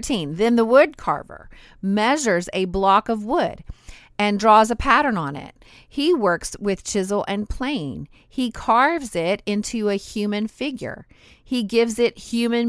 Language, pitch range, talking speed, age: English, 185-240 Hz, 150 wpm, 40-59